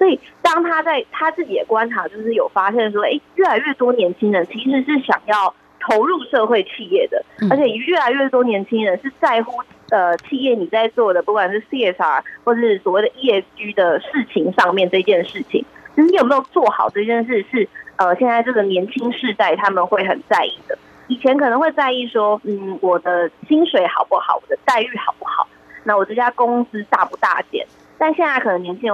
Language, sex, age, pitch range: Chinese, female, 20-39, 205-295 Hz